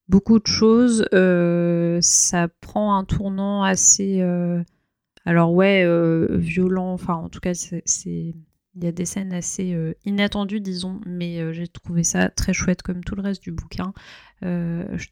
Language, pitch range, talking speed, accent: French, 180-205 Hz, 175 wpm, French